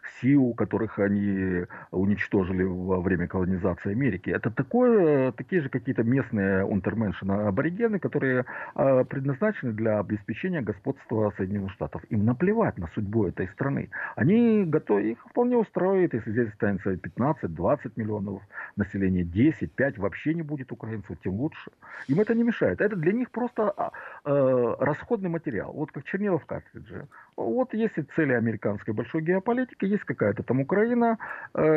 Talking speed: 140 wpm